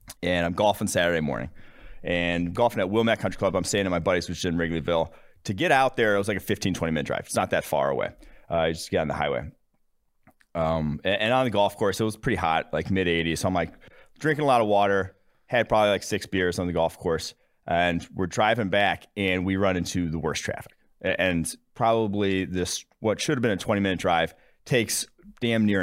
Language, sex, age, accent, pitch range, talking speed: English, male, 30-49, American, 85-105 Hz, 230 wpm